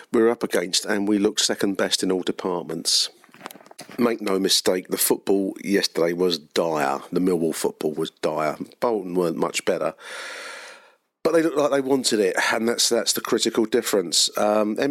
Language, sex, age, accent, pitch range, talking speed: English, male, 40-59, British, 95-110 Hz, 175 wpm